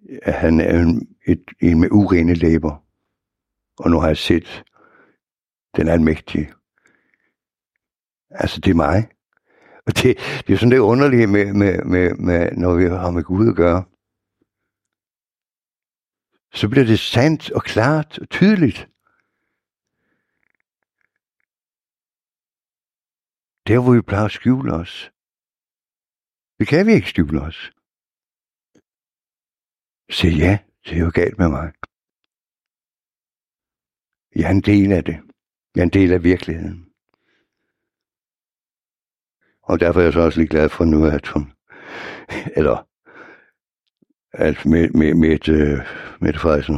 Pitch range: 80-100 Hz